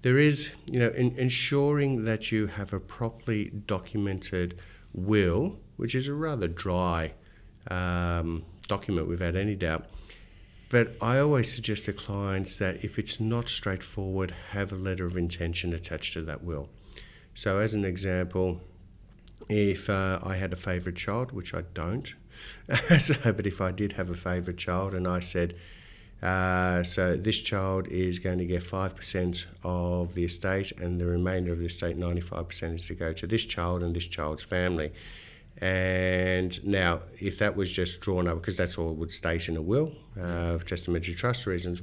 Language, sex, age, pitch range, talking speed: English, male, 50-69, 85-100 Hz, 170 wpm